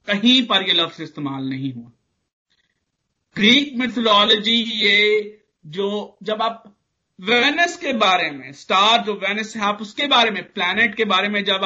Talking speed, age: 155 wpm, 50-69